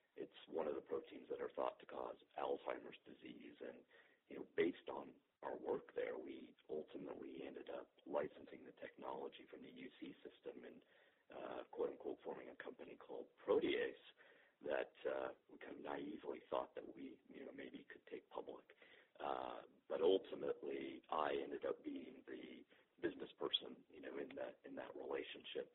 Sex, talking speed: male, 165 wpm